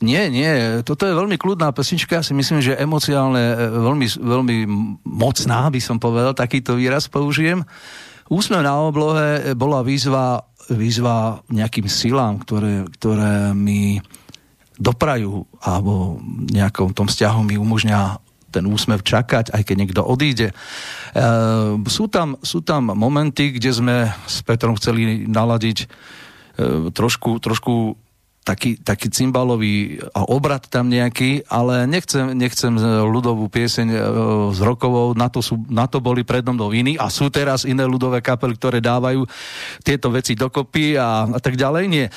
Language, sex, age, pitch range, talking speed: Slovak, male, 50-69, 110-135 Hz, 145 wpm